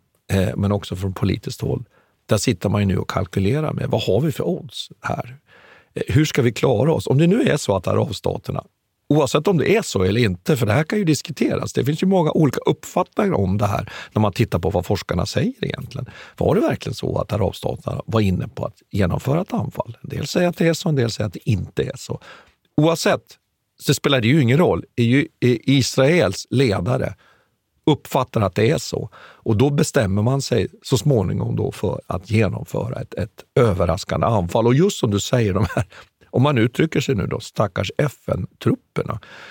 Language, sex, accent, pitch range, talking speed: Swedish, male, native, 100-145 Hz, 205 wpm